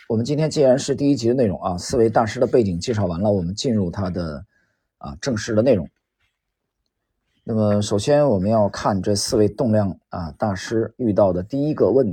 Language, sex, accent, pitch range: Chinese, male, native, 100-160 Hz